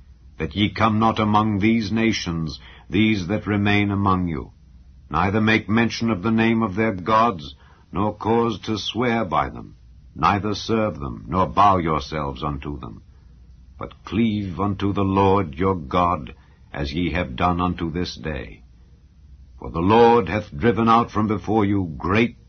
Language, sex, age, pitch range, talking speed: English, male, 60-79, 75-110 Hz, 155 wpm